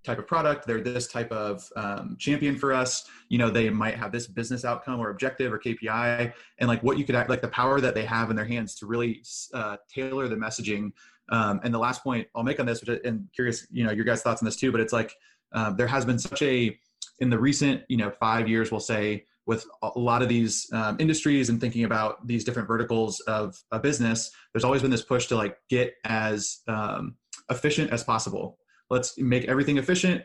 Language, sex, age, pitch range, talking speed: English, male, 20-39, 115-125 Hz, 225 wpm